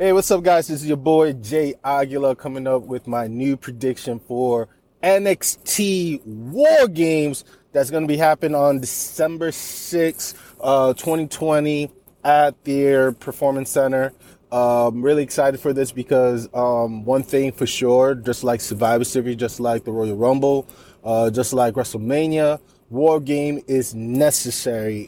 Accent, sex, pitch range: American, male, 125-150 Hz